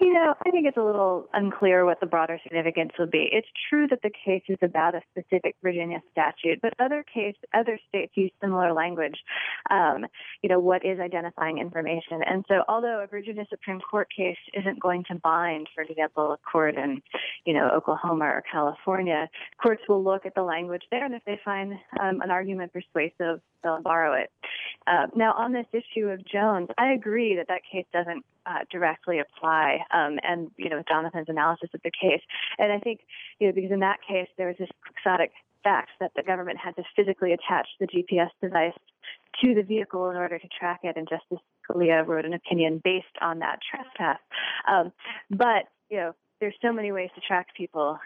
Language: English